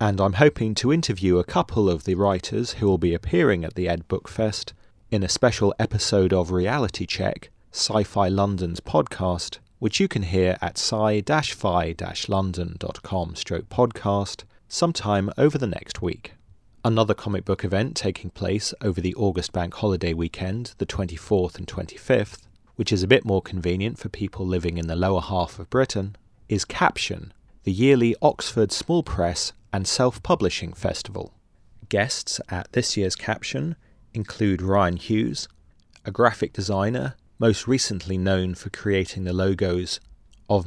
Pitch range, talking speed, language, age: 90-110 Hz, 145 wpm, English, 30-49